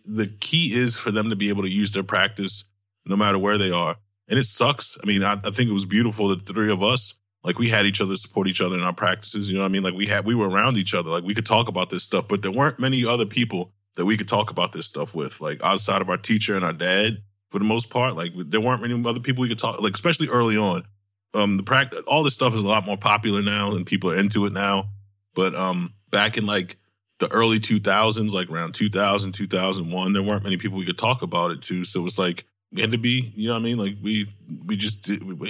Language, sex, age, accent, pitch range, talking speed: English, male, 20-39, American, 95-110 Hz, 270 wpm